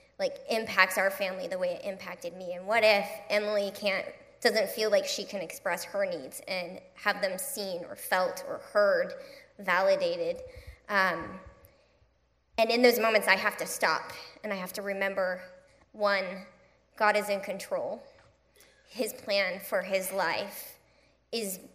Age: 20-39